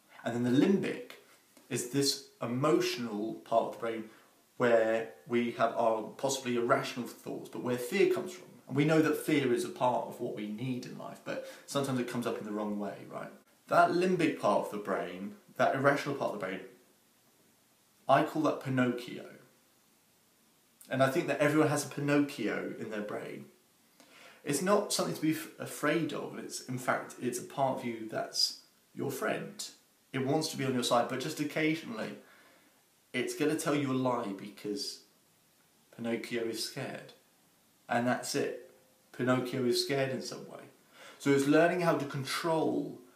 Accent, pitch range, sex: British, 115-145 Hz, male